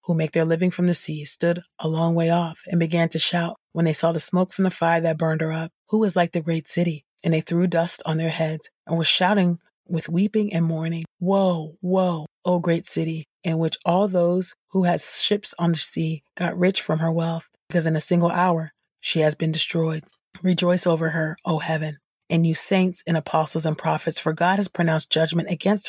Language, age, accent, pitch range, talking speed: English, 30-49, American, 160-180 Hz, 225 wpm